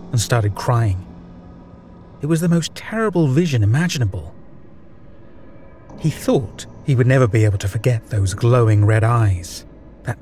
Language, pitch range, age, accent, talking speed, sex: English, 95-135 Hz, 30-49, British, 140 wpm, male